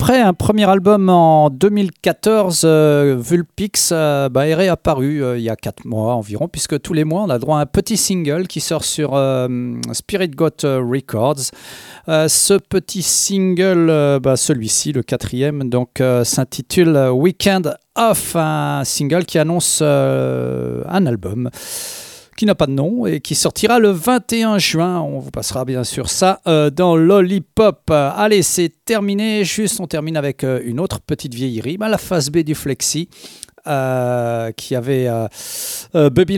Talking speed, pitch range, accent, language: 155 wpm, 135-190 Hz, French, French